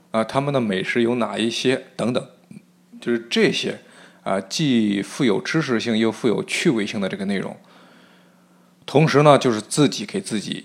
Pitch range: 105-145 Hz